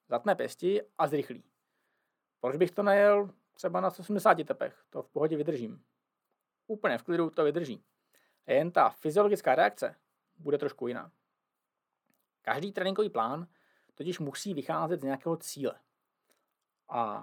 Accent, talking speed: native, 130 wpm